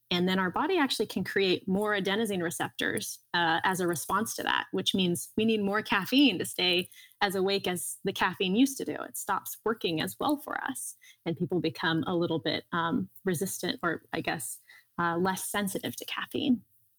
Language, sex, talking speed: English, female, 195 wpm